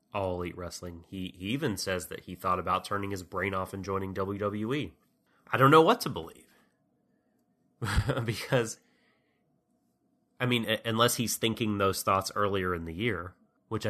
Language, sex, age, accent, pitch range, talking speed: English, male, 30-49, American, 90-110 Hz, 165 wpm